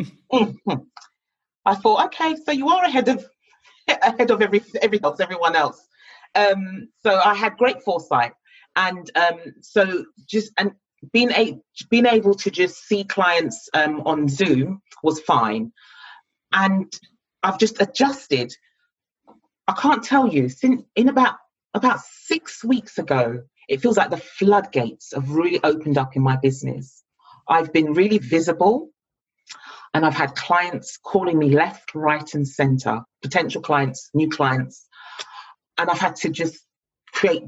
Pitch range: 150-210 Hz